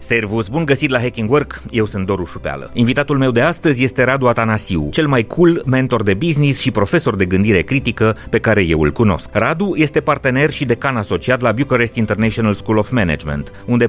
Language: Romanian